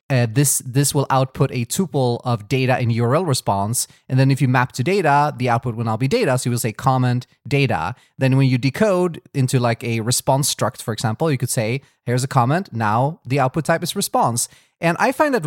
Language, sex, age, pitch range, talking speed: English, male, 30-49, 125-150 Hz, 225 wpm